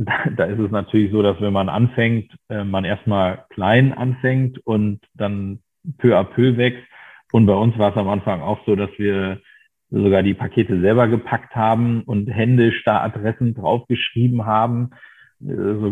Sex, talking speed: male, 160 wpm